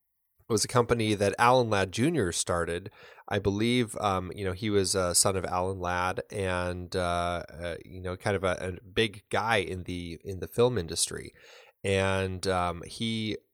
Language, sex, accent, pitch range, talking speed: English, male, American, 95-115 Hz, 175 wpm